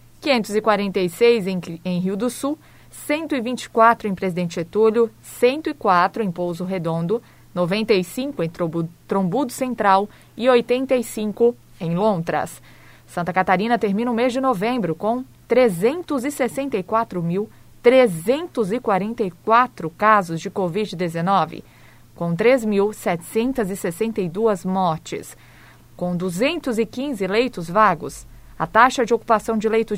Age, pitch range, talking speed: 20-39, 190-245 Hz, 95 wpm